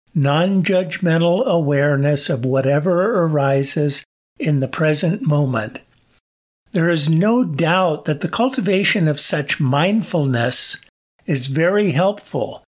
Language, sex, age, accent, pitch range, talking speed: English, male, 50-69, American, 145-180 Hz, 105 wpm